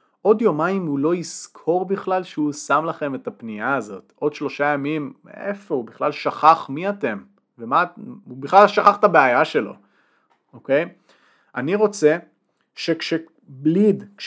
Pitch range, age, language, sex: 130-165 Hz, 30-49, Hebrew, male